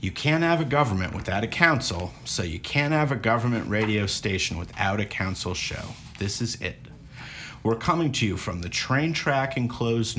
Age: 50-69